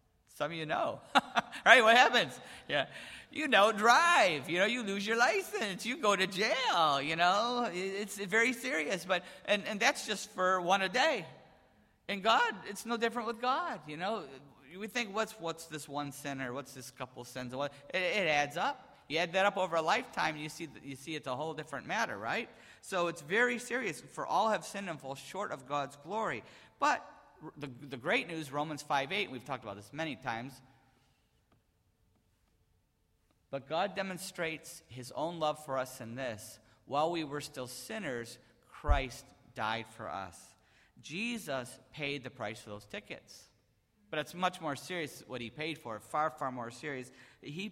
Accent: American